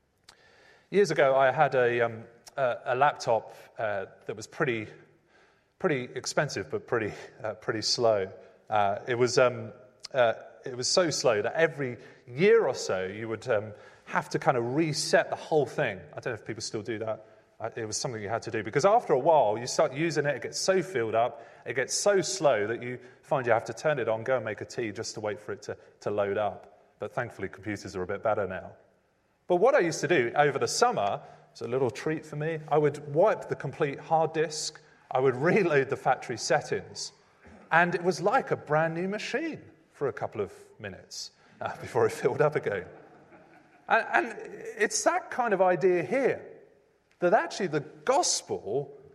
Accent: British